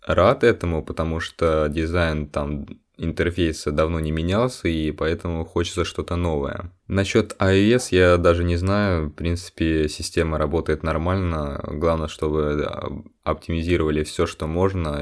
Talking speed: 130 wpm